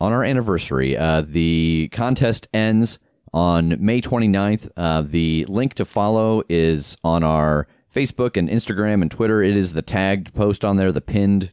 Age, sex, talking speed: 30-49, male, 165 wpm